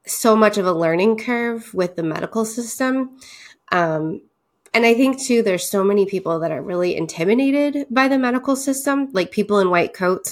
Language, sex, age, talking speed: English, female, 20-39, 185 wpm